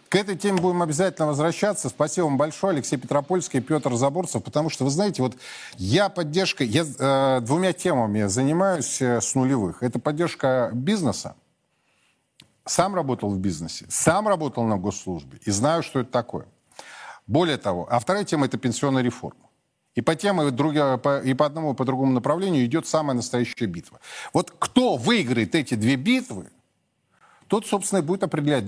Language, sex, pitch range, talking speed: Russian, male, 125-185 Hz, 165 wpm